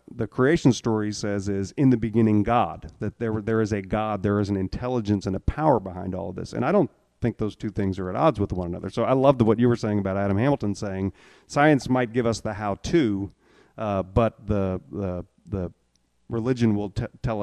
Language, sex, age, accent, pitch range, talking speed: English, male, 40-59, American, 100-125 Hz, 225 wpm